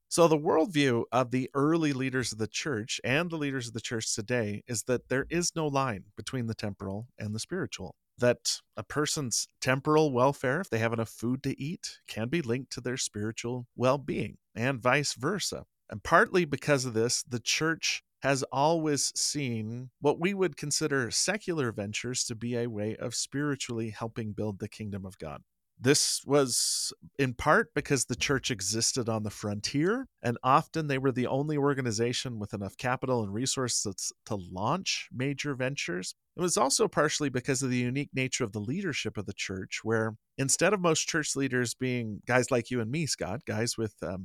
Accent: American